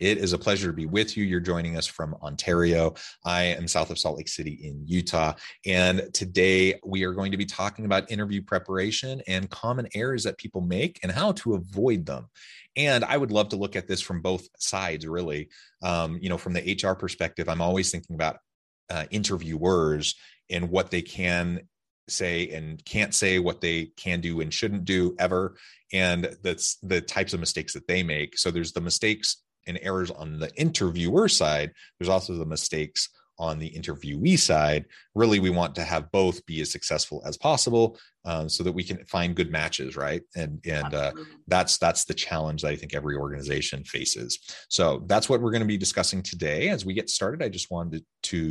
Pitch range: 80-95 Hz